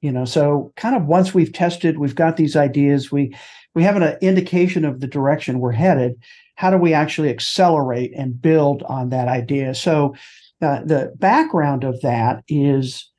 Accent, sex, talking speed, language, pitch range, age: American, male, 180 wpm, English, 135-175 Hz, 50-69